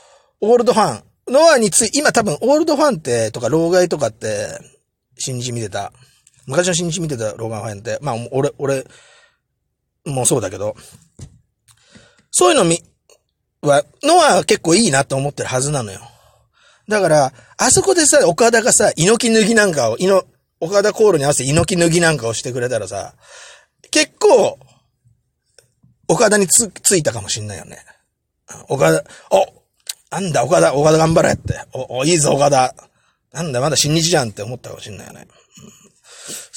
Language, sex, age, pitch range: Japanese, male, 30-49, 125-210 Hz